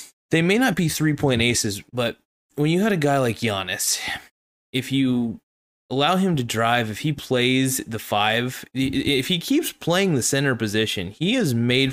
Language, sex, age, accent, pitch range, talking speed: English, male, 20-39, American, 105-135 Hz, 175 wpm